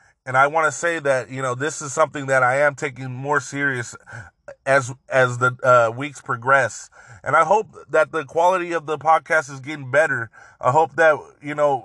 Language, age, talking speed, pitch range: English, 20-39, 205 wpm, 135-165 Hz